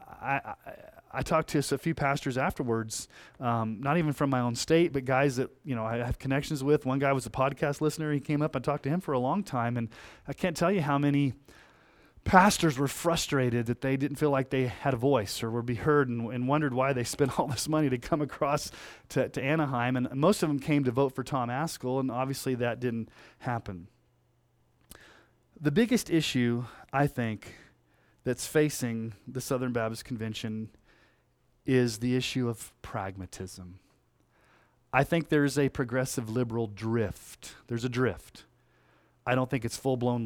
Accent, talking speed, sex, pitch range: American, 190 wpm, male, 120-145 Hz